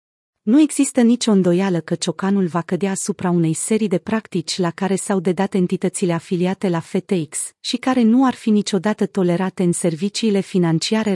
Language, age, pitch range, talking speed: Romanian, 30-49, 175-220 Hz, 165 wpm